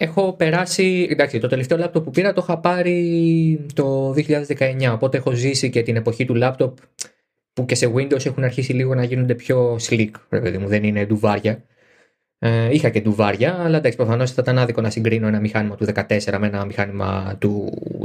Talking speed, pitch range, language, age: 185 wpm, 110-155 Hz, Greek, 20-39